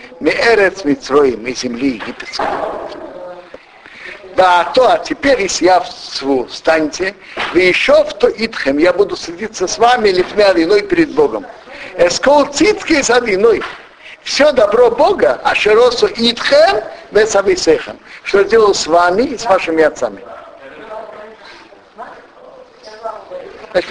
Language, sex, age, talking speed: Russian, male, 60-79, 115 wpm